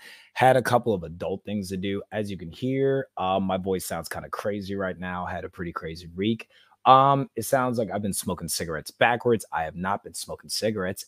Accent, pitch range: American, 90-120 Hz